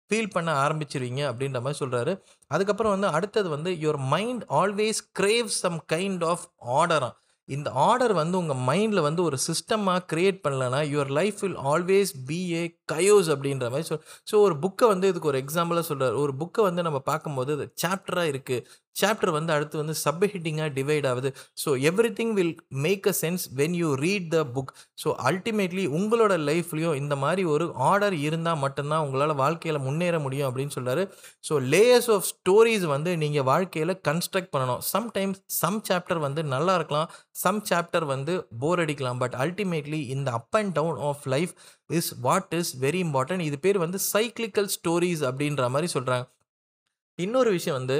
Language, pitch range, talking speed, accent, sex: Tamil, 145-190 Hz, 165 wpm, native, male